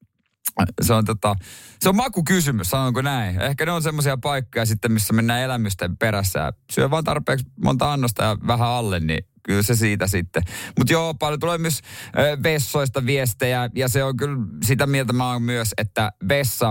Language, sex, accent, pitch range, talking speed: Finnish, male, native, 110-150 Hz, 185 wpm